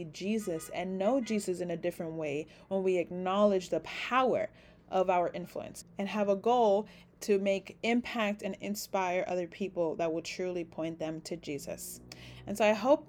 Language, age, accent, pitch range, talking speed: English, 30-49, American, 170-205 Hz, 175 wpm